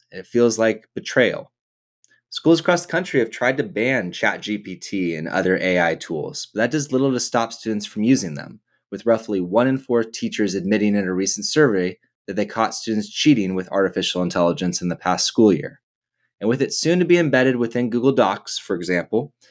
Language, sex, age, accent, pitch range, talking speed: English, male, 20-39, American, 95-140 Hz, 195 wpm